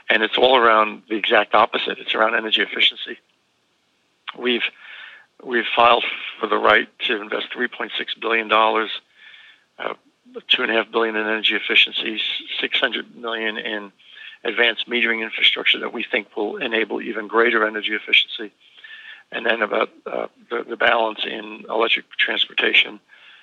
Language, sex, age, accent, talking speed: English, male, 60-79, American, 135 wpm